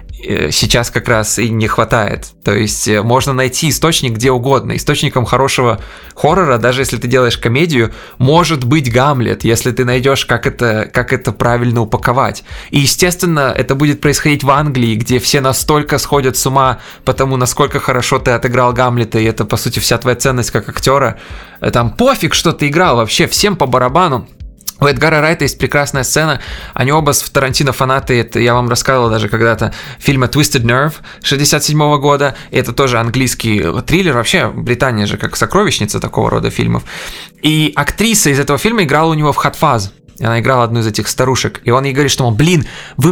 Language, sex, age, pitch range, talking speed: Russian, male, 20-39, 120-150 Hz, 180 wpm